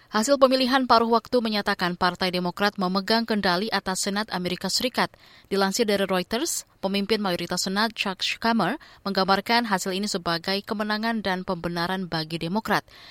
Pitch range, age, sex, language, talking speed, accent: 175-215 Hz, 20-39, female, Indonesian, 135 wpm, native